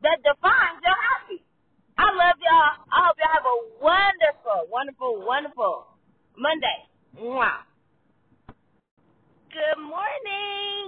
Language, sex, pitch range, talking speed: English, female, 260-360 Hz, 105 wpm